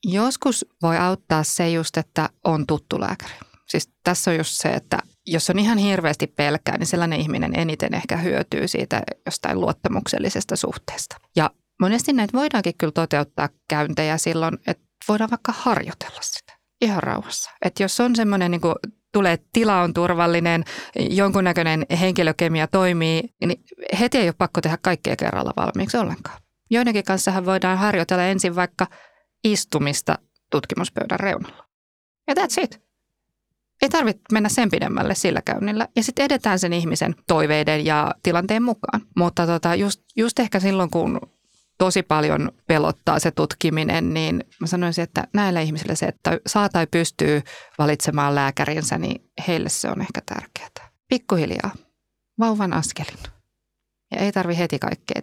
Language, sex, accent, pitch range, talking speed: Finnish, female, native, 165-215 Hz, 145 wpm